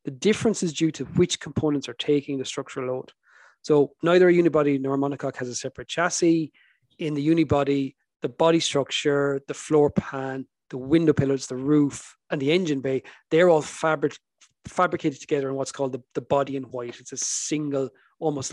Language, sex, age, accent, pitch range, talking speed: English, male, 30-49, Irish, 135-155 Hz, 185 wpm